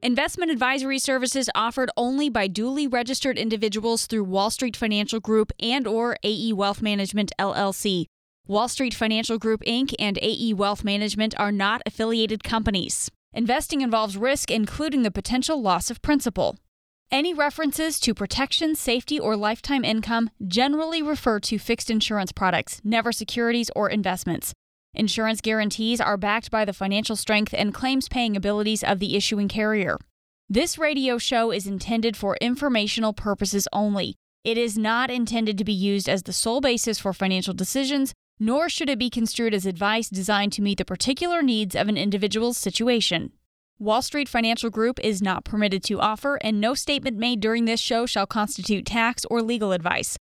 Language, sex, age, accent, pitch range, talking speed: English, female, 20-39, American, 205-245 Hz, 165 wpm